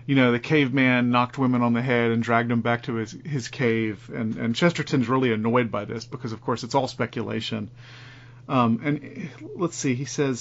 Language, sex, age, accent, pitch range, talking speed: English, male, 40-59, American, 120-145 Hz, 210 wpm